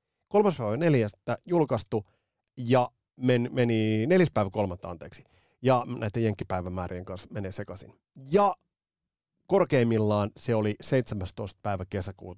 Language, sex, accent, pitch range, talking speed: Finnish, male, native, 100-135 Hz, 110 wpm